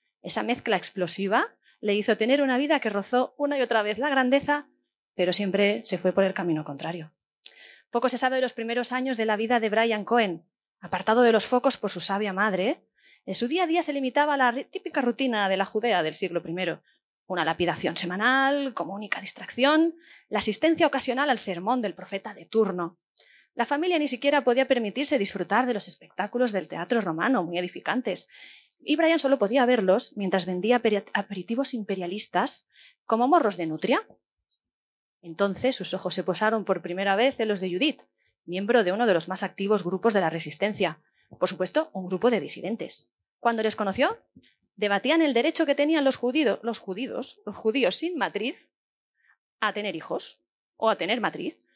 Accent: Spanish